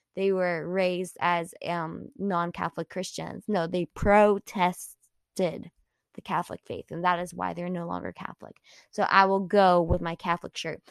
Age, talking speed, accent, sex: 10-29, 160 wpm, American, female